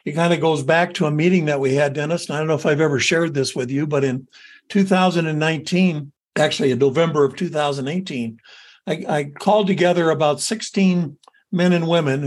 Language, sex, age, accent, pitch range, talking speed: English, male, 60-79, American, 145-185 Hz, 195 wpm